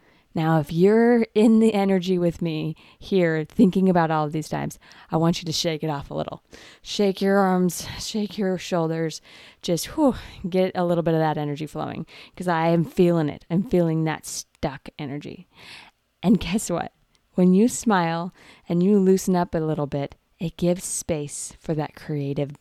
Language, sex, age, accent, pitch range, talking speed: English, female, 20-39, American, 155-190 Hz, 180 wpm